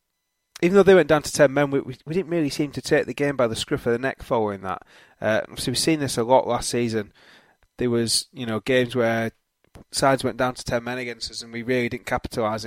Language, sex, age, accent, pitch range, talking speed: English, male, 20-39, British, 115-130 Hz, 250 wpm